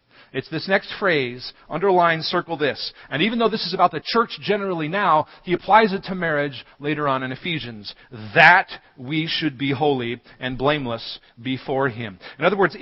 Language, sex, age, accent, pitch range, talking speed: English, male, 40-59, American, 130-180 Hz, 180 wpm